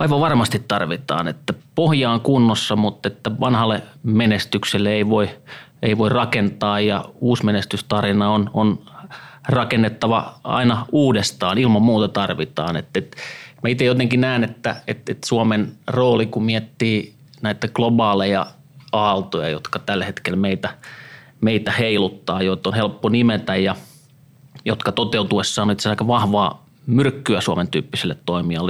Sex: male